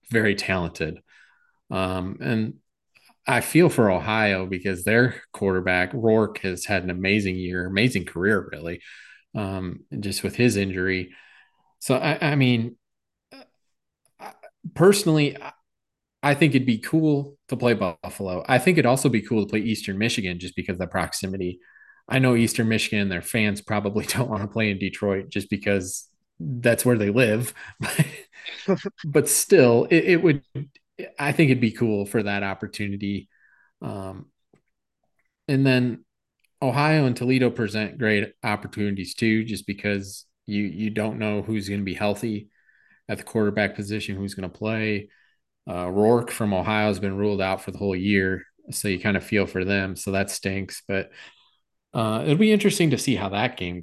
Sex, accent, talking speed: male, American, 165 wpm